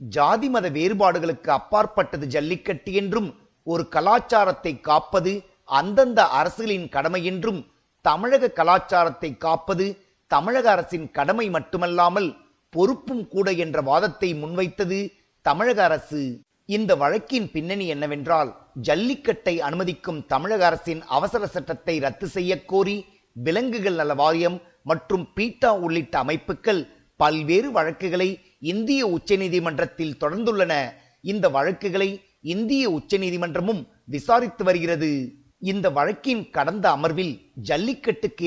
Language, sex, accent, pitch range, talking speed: Tamil, male, native, 160-200 Hz, 95 wpm